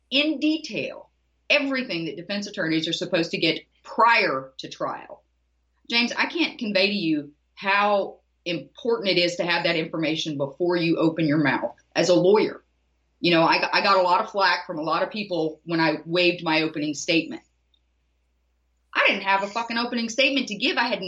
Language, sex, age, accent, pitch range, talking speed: English, female, 30-49, American, 160-230 Hz, 190 wpm